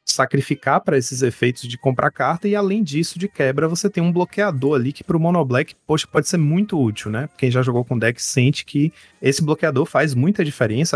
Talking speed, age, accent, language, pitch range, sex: 210 wpm, 30-49, Brazilian, Portuguese, 120-155 Hz, male